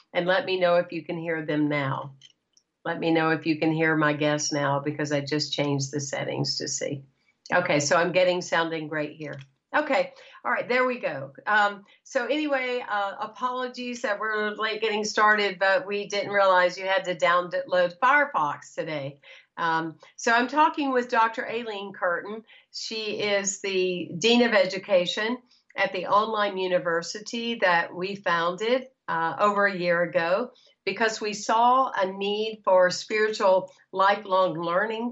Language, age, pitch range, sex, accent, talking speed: English, 50-69, 175-225 Hz, female, American, 165 wpm